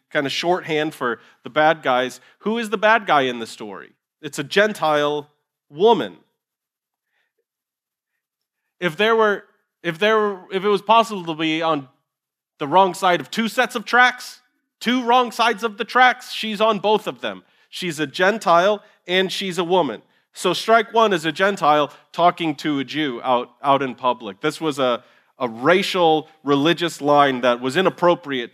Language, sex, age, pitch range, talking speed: English, male, 30-49, 145-210 Hz, 170 wpm